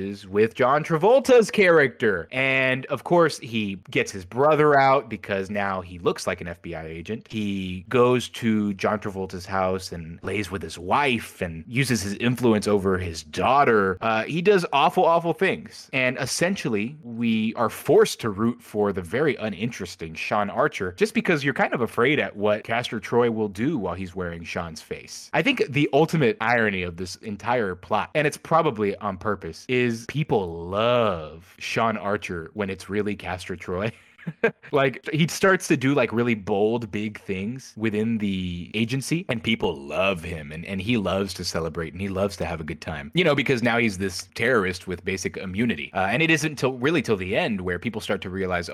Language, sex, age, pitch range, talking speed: English, male, 30-49, 95-130 Hz, 190 wpm